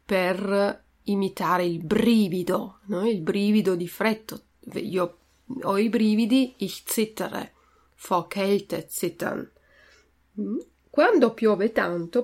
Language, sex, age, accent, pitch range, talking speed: Italian, female, 40-59, native, 175-220 Hz, 105 wpm